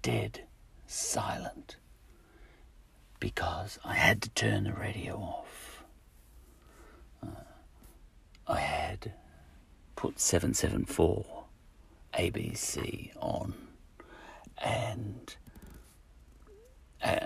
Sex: male